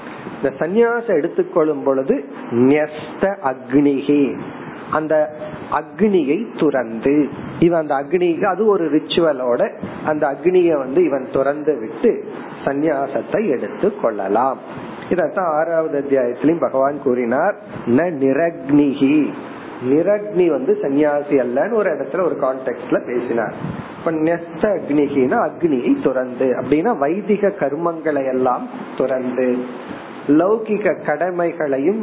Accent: native